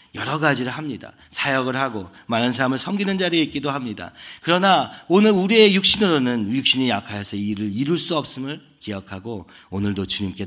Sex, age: male, 40-59